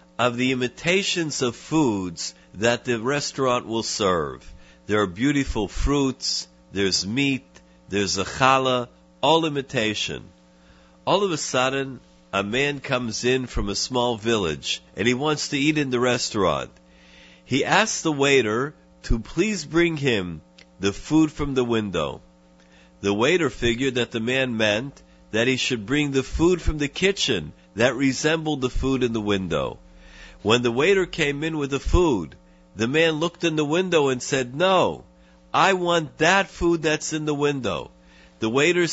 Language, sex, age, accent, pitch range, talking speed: English, male, 50-69, American, 100-155 Hz, 160 wpm